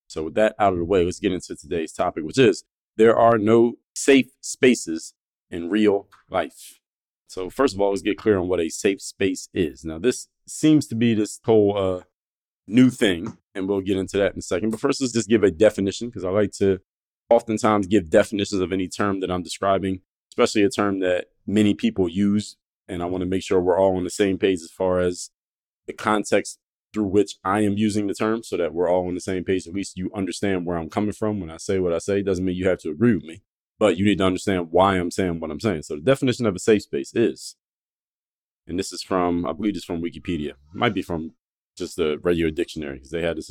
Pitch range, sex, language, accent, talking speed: 90-110 Hz, male, English, American, 240 wpm